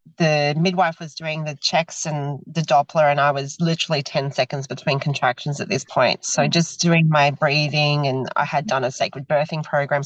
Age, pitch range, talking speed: 30-49, 150-180 Hz, 195 wpm